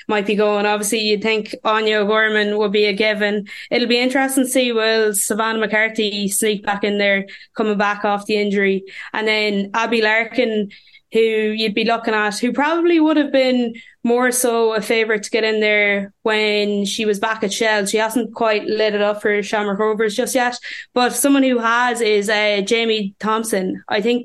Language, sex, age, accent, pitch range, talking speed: English, female, 20-39, Irish, 210-230 Hz, 195 wpm